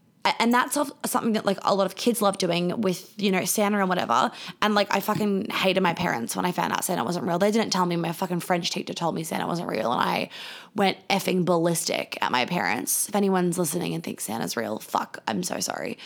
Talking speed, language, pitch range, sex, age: 235 wpm, English, 190-260 Hz, female, 20-39